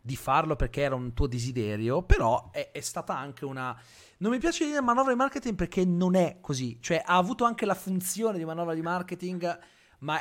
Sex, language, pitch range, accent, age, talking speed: male, Italian, 120-180 Hz, native, 30-49, 205 wpm